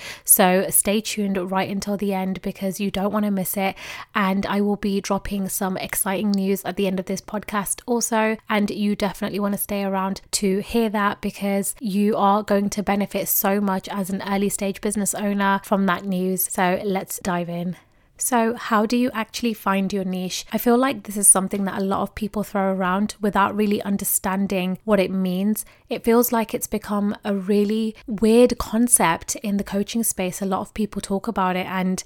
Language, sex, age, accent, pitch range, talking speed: English, female, 20-39, British, 185-210 Hz, 200 wpm